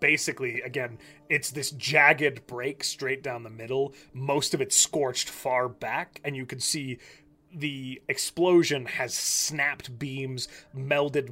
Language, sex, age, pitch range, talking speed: English, male, 30-49, 120-145 Hz, 140 wpm